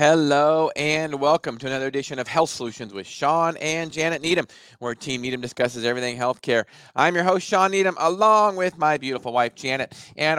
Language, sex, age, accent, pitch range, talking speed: English, male, 40-59, American, 105-145 Hz, 185 wpm